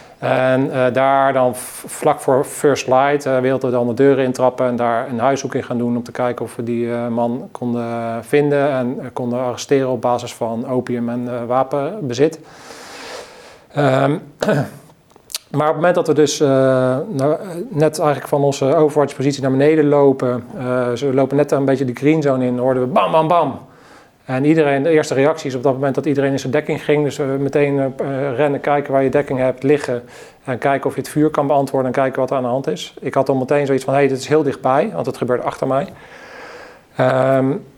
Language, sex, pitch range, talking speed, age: Dutch, male, 125-145 Hz, 220 wpm, 40-59